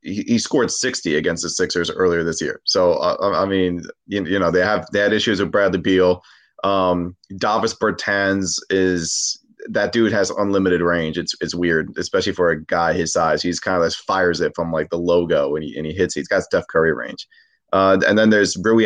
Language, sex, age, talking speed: English, male, 30-49, 215 wpm